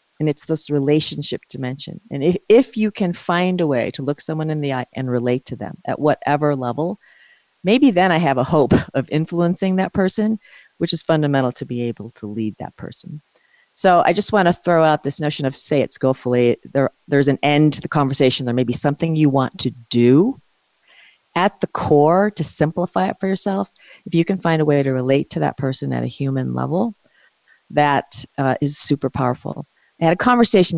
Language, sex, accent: English, female, American